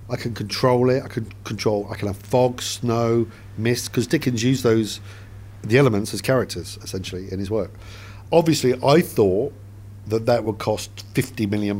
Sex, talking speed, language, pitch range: male, 175 wpm, English, 100-120 Hz